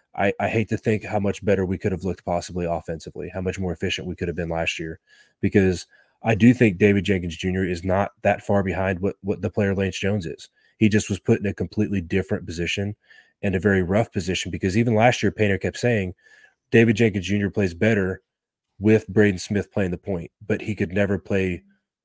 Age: 20-39